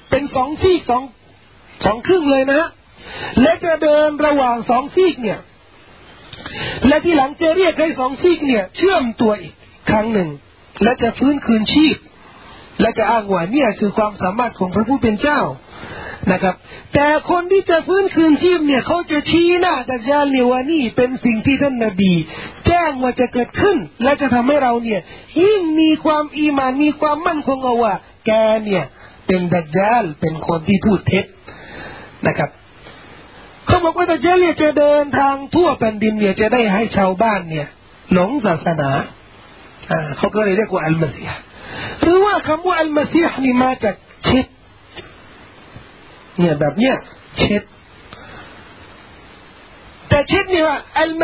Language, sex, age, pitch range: Thai, male, 40-59, 215-310 Hz